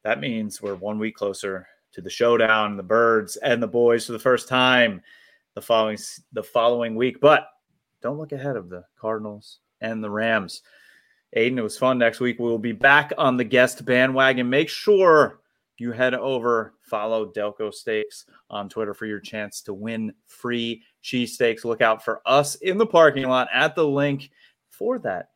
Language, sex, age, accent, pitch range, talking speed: English, male, 30-49, American, 110-125 Hz, 180 wpm